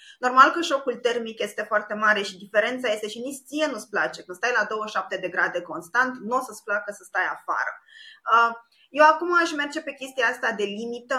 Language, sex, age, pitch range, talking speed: Romanian, female, 20-39, 210-260 Hz, 205 wpm